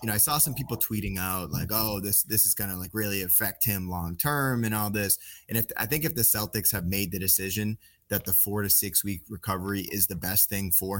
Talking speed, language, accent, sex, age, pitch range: 250 wpm, English, American, male, 20-39, 90-105 Hz